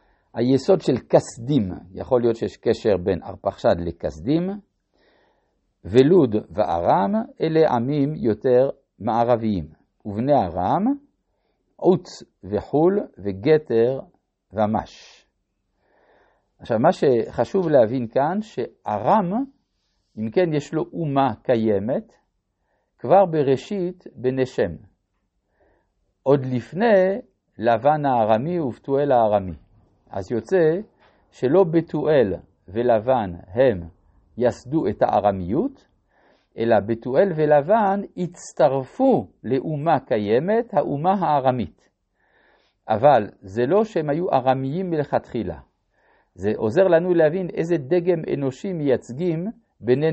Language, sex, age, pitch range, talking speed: Hebrew, male, 50-69, 110-170 Hz, 90 wpm